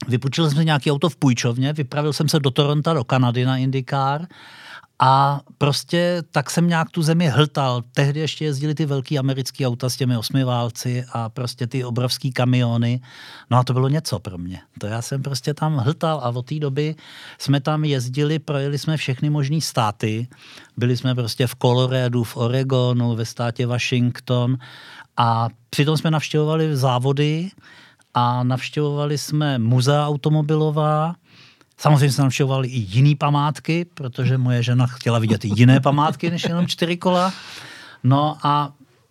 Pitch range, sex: 125-150 Hz, male